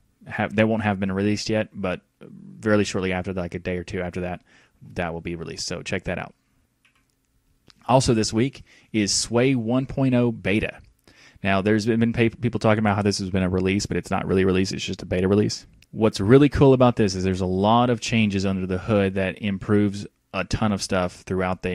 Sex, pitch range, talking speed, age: male, 90-110 Hz, 210 wpm, 20-39